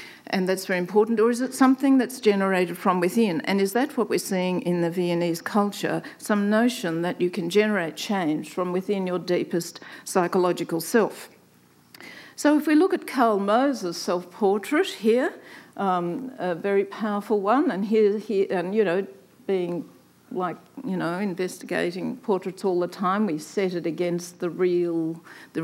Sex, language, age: female, English, 50-69